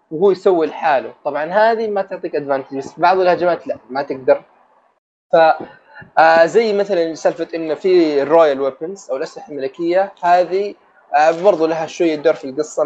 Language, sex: Arabic, male